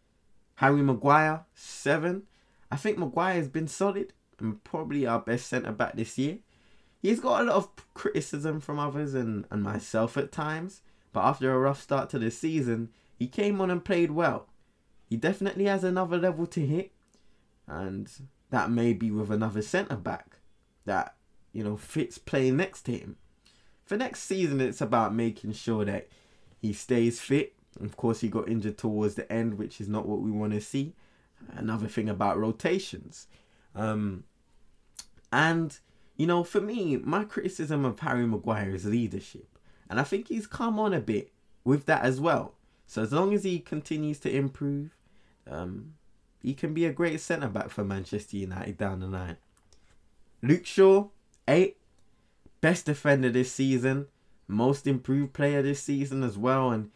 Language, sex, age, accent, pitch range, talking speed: English, male, 20-39, British, 110-160 Hz, 165 wpm